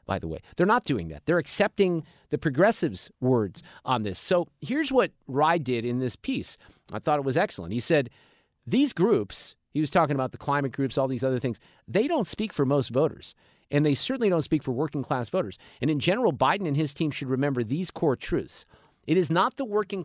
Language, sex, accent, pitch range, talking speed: English, male, American, 130-170 Hz, 220 wpm